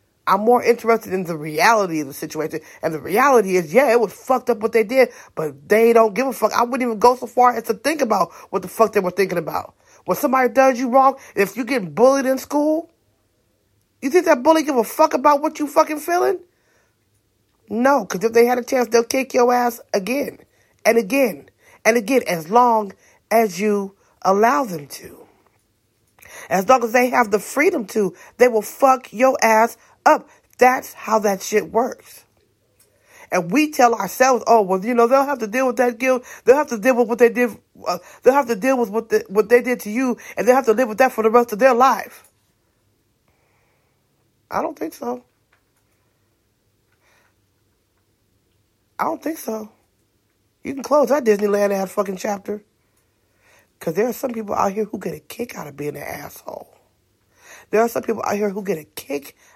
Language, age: English, 30-49